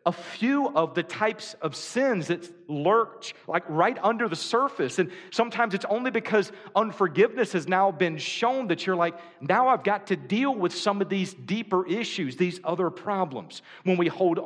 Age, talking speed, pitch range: 40-59, 185 wpm, 165-215 Hz